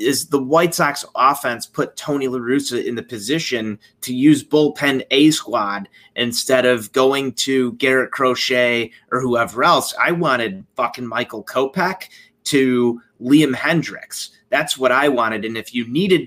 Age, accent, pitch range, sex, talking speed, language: 30-49, American, 120-150 Hz, male, 150 wpm, English